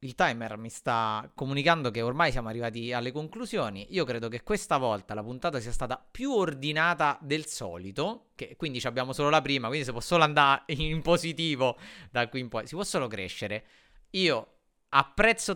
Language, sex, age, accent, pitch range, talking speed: Italian, male, 30-49, native, 115-165 Hz, 180 wpm